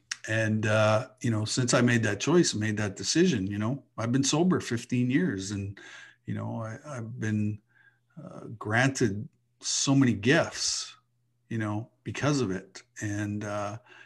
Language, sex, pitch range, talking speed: English, male, 105-135 Hz, 155 wpm